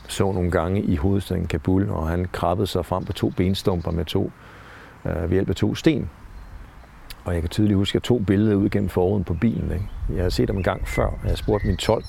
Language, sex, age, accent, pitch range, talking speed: English, male, 60-79, Danish, 90-110 Hz, 240 wpm